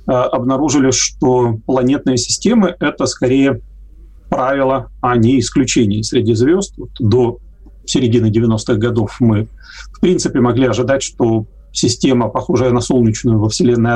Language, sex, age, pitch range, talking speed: Russian, male, 30-49, 115-135 Hz, 125 wpm